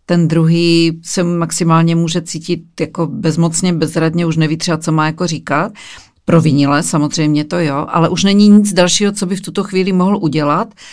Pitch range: 160-180 Hz